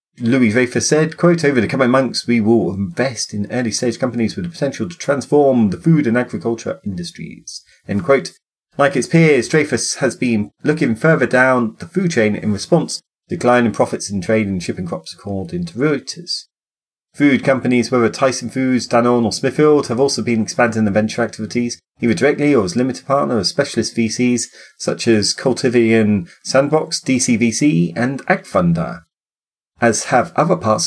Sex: male